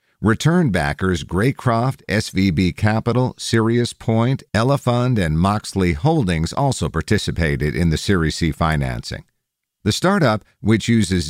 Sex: male